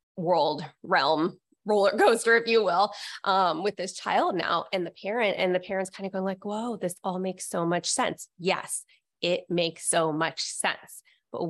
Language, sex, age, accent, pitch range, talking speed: English, female, 20-39, American, 175-210 Hz, 190 wpm